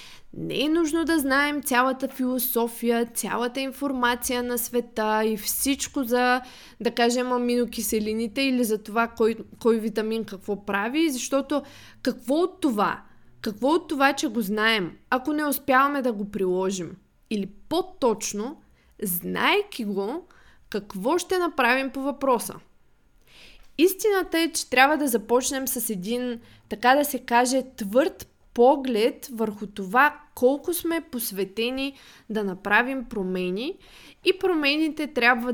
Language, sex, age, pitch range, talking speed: Bulgarian, female, 20-39, 215-280 Hz, 125 wpm